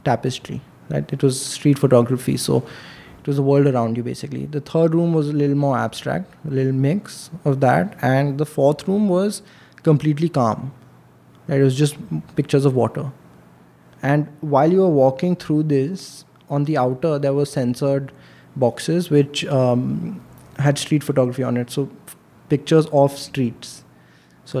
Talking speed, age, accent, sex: 165 wpm, 20-39, native, male